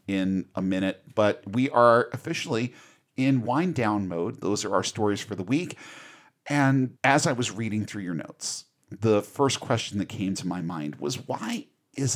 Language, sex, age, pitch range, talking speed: English, male, 40-59, 100-135 Hz, 180 wpm